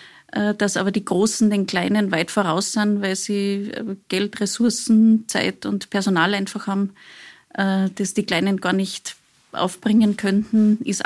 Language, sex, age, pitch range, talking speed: German, female, 30-49, 195-215 Hz, 140 wpm